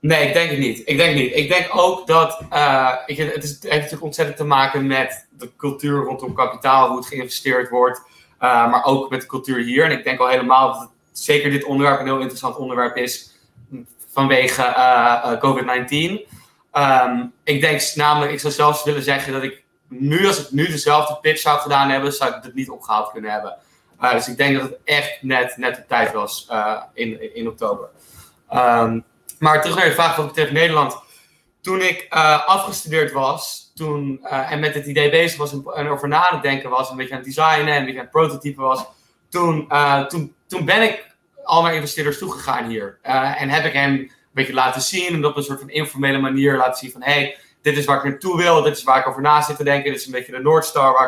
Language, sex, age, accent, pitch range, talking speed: Dutch, male, 20-39, Dutch, 130-155 Hz, 220 wpm